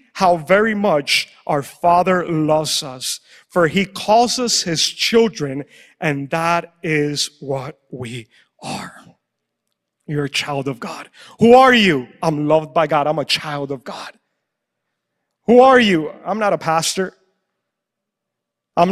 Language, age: English, 30-49